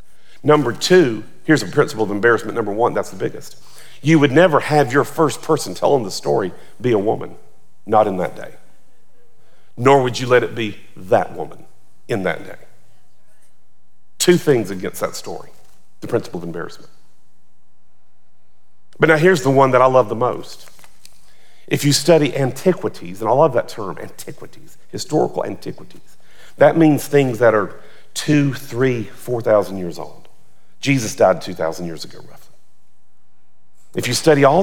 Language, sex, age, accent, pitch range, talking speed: English, male, 50-69, American, 105-150 Hz, 160 wpm